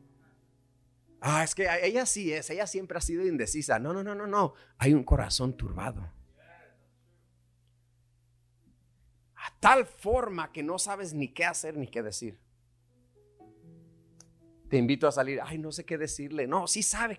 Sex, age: male, 30-49